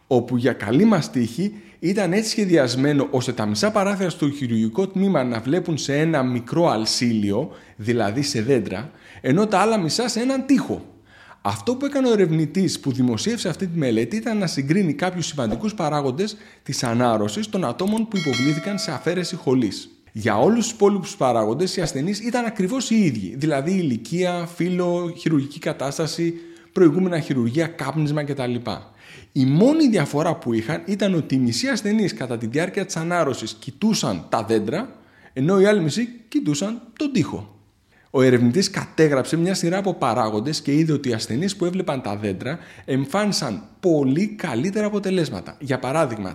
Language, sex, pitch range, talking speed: Greek, male, 125-190 Hz, 160 wpm